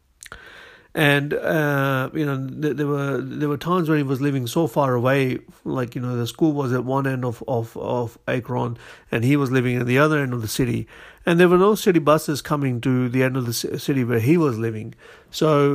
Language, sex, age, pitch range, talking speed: English, male, 50-69, 120-145 Hz, 220 wpm